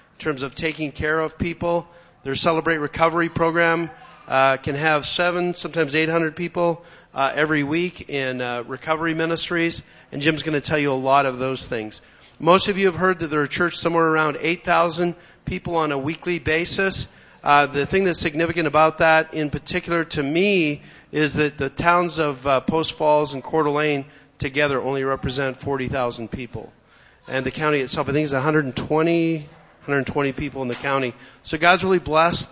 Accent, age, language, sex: American, 40-59, English, male